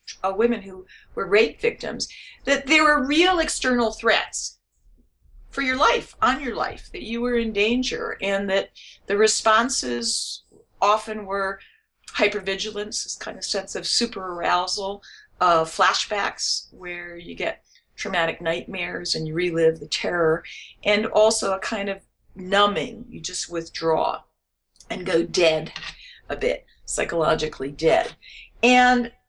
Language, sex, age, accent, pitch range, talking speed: English, female, 50-69, American, 185-240 Hz, 135 wpm